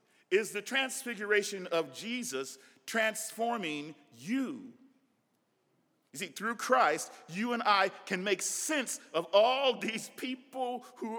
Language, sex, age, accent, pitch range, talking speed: English, male, 40-59, American, 180-255 Hz, 120 wpm